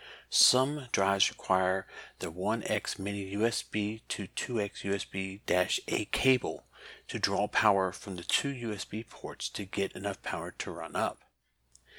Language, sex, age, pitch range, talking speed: English, male, 50-69, 95-115 Hz, 130 wpm